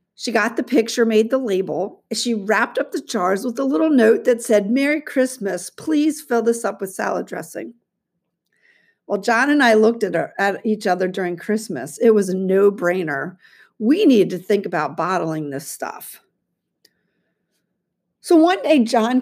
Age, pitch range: 50-69, 185-250 Hz